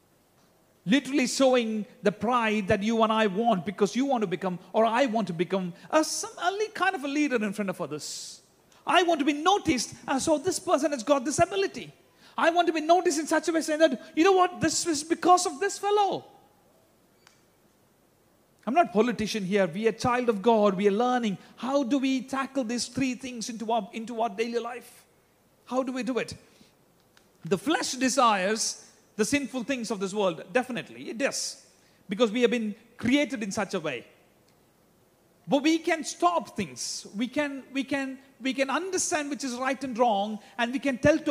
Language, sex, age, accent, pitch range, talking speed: Malayalam, male, 40-59, native, 205-280 Hz, 200 wpm